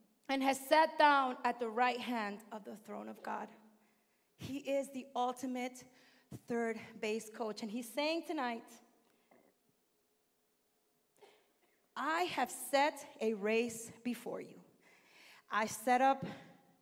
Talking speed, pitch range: 120 wpm, 235-290 Hz